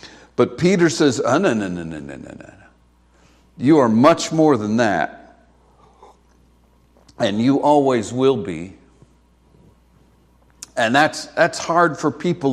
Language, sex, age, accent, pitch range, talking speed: English, male, 60-79, American, 80-135 Hz, 140 wpm